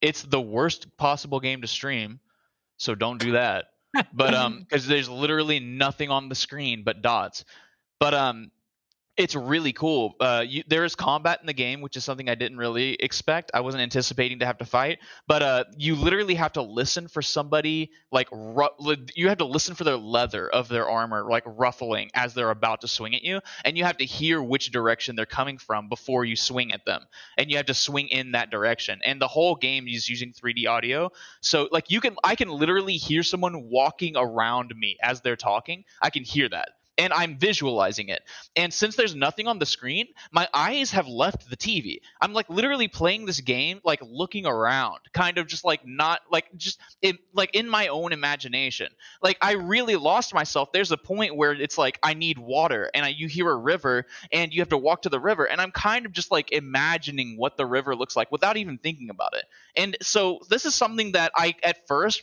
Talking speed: 210 wpm